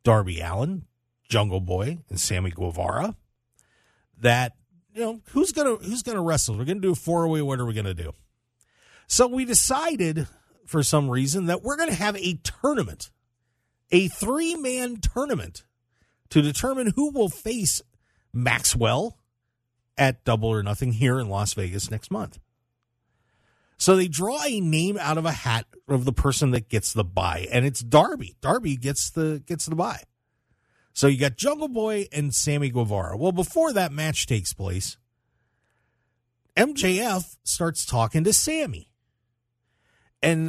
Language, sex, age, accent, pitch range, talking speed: English, male, 40-59, American, 115-175 Hz, 160 wpm